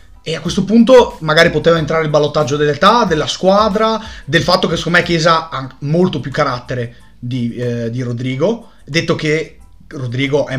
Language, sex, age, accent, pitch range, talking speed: Italian, male, 30-49, native, 145-190 Hz, 170 wpm